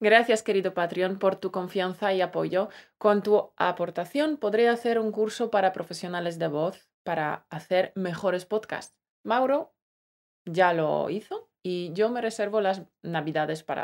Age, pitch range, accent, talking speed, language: 20-39, 170-210 Hz, Spanish, 150 wpm, Spanish